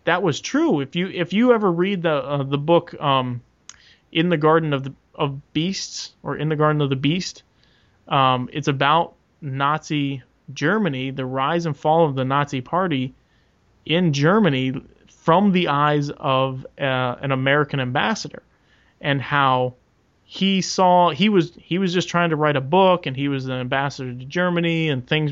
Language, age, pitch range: English, 30-49, 135-155 Hz